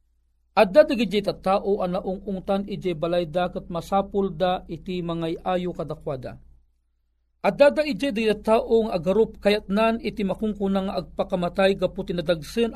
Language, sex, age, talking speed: Filipino, male, 40-59, 130 wpm